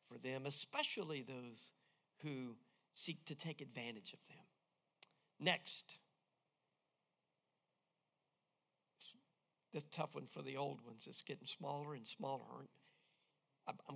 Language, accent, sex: English, American, male